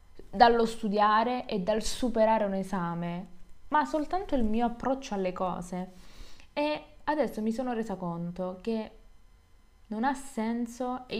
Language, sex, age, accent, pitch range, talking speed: Italian, female, 20-39, native, 195-255 Hz, 135 wpm